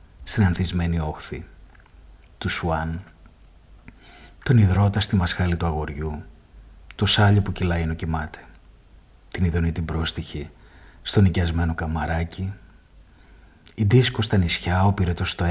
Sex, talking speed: male, 115 wpm